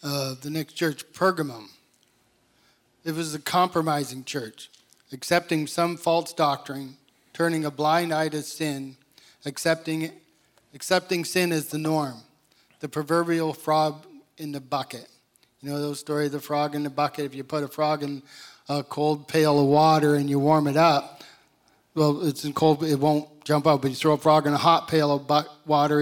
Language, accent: English, American